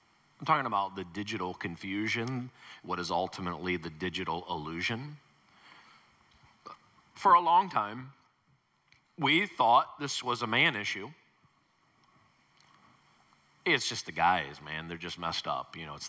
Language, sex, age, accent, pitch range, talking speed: English, male, 40-59, American, 85-130 Hz, 130 wpm